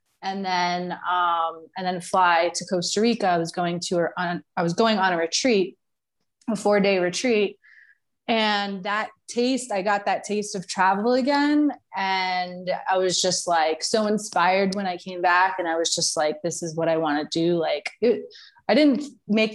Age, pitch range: 20-39, 175-210 Hz